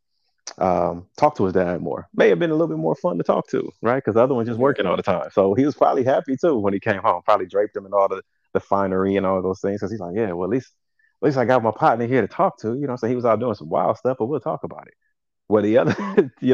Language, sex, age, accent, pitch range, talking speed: English, male, 30-49, American, 95-115 Hz, 310 wpm